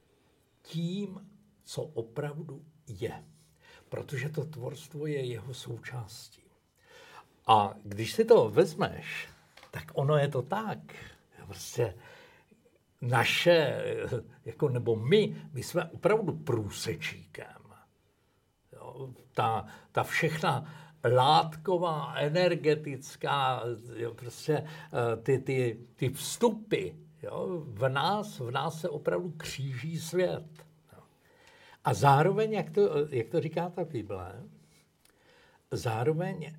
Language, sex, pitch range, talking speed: Slovak, male, 125-165 Hz, 100 wpm